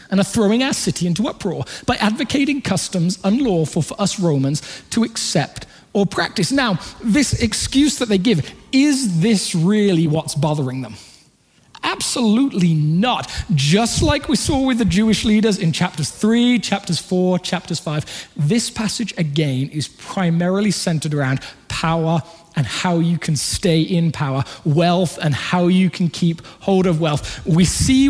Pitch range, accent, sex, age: 160-215 Hz, British, male, 20-39